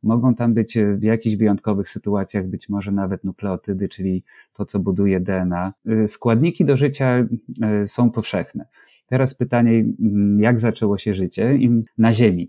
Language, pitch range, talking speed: Polish, 100-115 Hz, 140 wpm